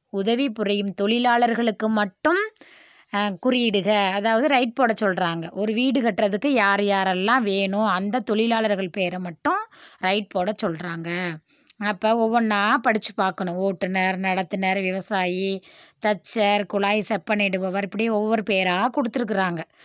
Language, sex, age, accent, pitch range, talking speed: English, female, 20-39, Indian, 190-230 Hz, 105 wpm